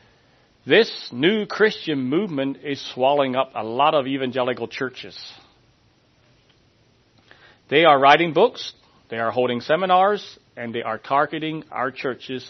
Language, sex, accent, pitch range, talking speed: English, male, American, 120-165 Hz, 125 wpm